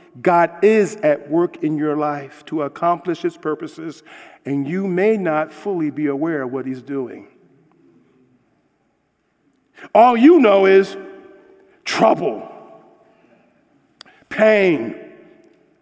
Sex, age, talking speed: male, 50-69, 105 wpm